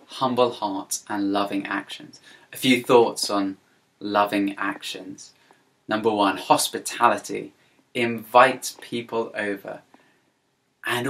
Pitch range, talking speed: 105-125 Hz, 95 wpm